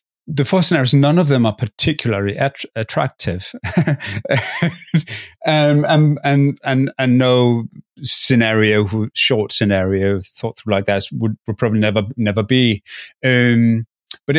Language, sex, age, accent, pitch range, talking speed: English, male, 30-49, British, 100-125 Hz, 135 wpm